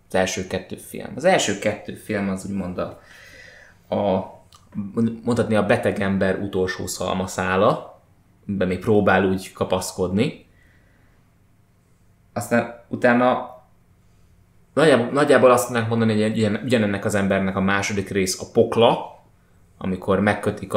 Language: Hungarian